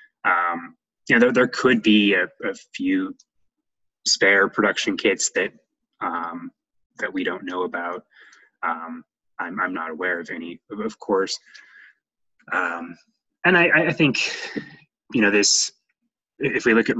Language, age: English, 20-39